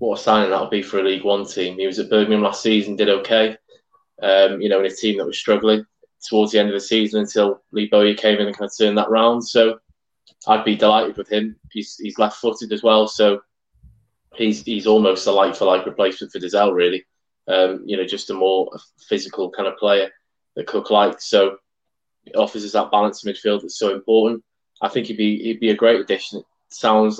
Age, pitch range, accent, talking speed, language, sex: 20-39, 100-110 Hz, British, 225 wpm, English, male